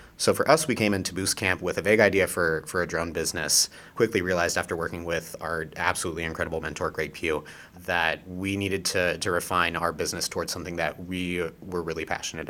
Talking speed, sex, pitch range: 205 wpm, male, 80-95 Hz